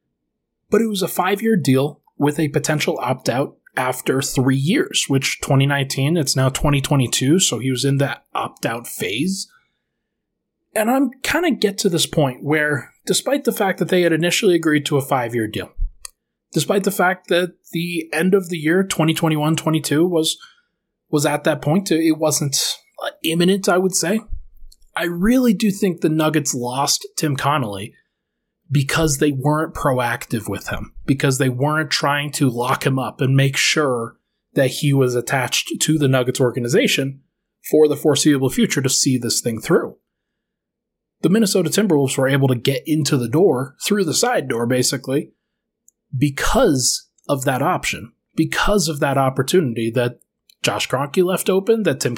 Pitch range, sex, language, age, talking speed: 135-185 Hz, male, English, 20-39, 160 wpm